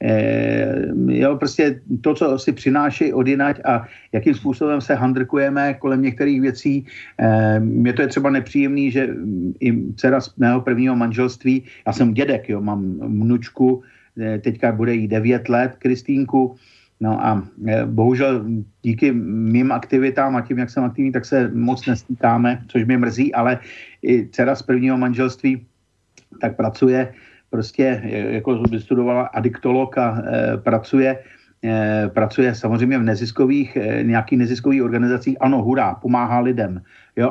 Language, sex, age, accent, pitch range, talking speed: Czech, male, 50-69, native, 115-135 Hz, 145 wpm